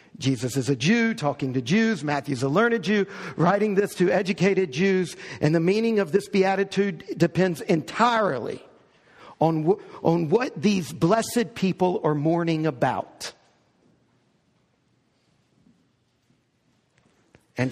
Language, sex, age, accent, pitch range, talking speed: English, male, 50-69, American, 175-245 Hz, 115 wpm